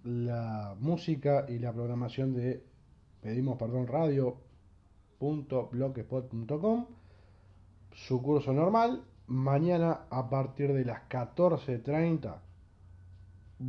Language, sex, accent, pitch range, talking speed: Spanish, male, Argentinian, 115-145 Hz, 80 wpm